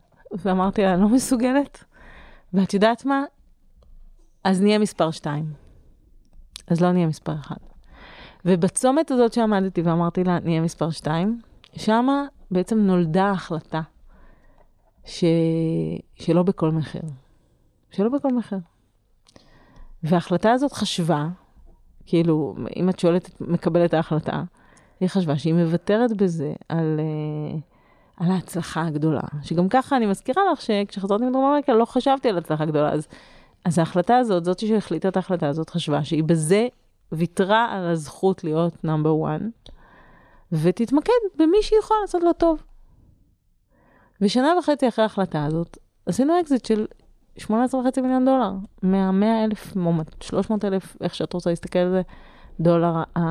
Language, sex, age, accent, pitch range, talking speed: Hebrew, female, 30-49, native, 160-220 Hz, 130 wpm